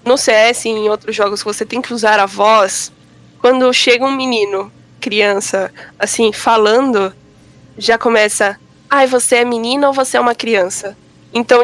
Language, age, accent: Portuguese, 10-29, Brazilian